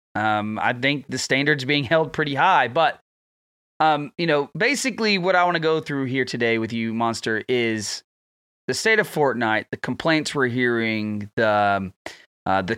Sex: male